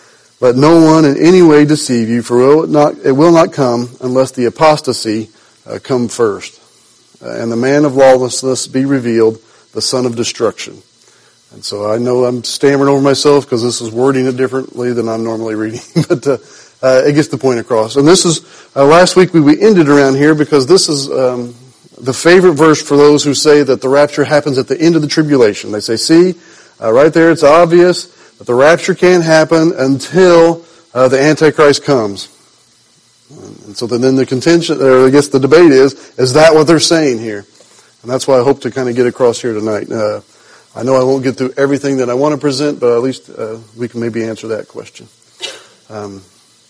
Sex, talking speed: male, 195 wpm